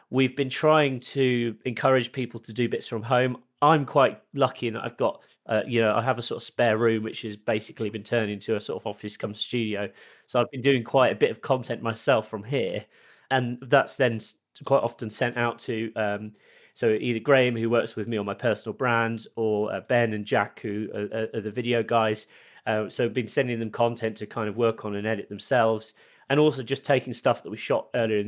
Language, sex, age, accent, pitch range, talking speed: English, male, 30-49, British, 110-130 Hz, 225 wpm